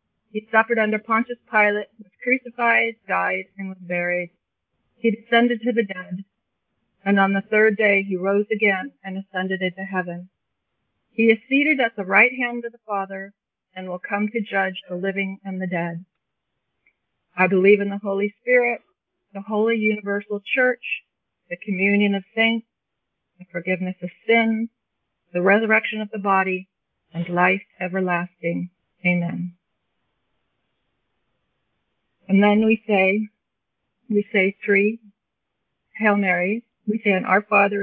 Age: 40-59